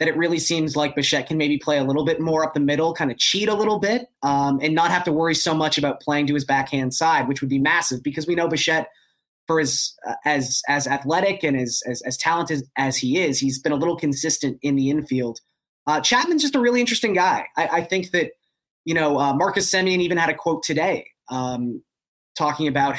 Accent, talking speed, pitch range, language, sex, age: American, 235 wpm, 140-175 Hz, English, male, 20-39